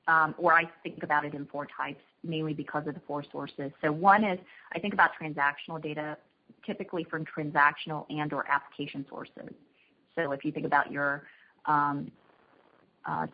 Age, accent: 30-49, American